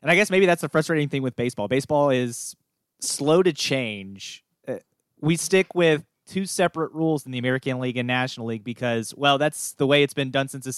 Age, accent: 20-39, American